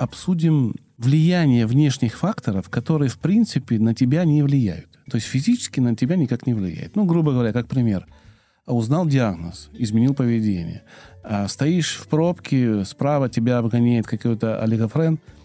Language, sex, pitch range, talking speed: Russian, male, 115-150 Hz, 140 wpm